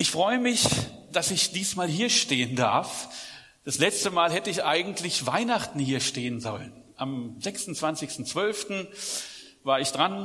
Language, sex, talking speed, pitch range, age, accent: German, male, 140 wpm, 140-190 Hz, 40-59, German